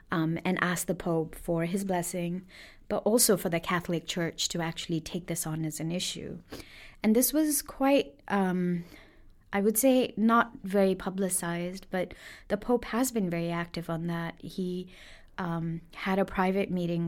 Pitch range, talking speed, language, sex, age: 165-195 Hz, 170 wpm, English, female, 30-49